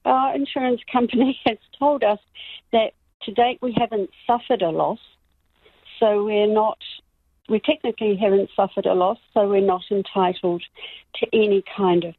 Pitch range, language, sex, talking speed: 195-225 Hz, English, female, 155 wpm